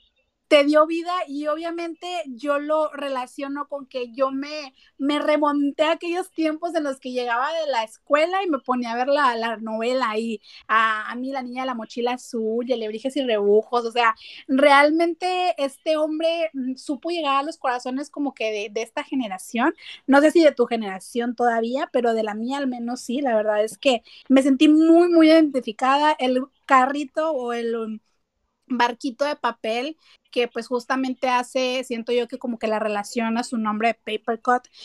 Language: Spanish